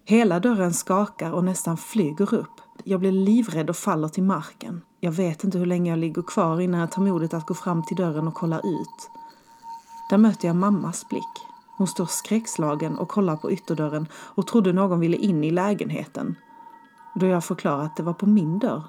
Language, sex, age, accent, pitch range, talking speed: Swedish, female, 30-49, native, 170-210 Hz, 195 wpm